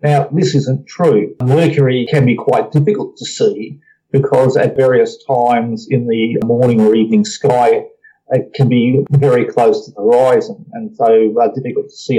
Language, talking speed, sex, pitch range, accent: English, 170 wpm, male, 120-175 Hz, Australian